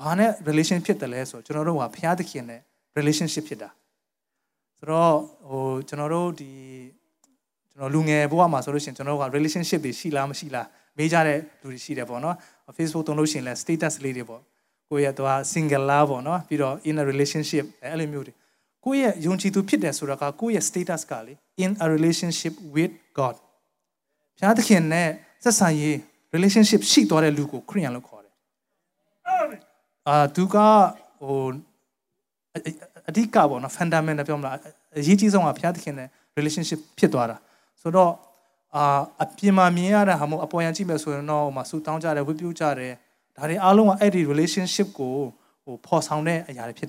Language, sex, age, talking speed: English, male, 20-39, 50 wpm